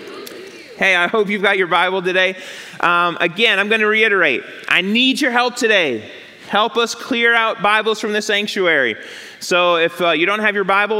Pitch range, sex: 160-205 Hz, male